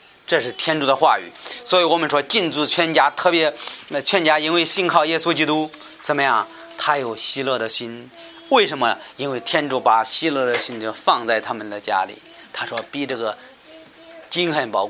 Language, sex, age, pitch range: Chinese, male, 30-49, 130-180 Hz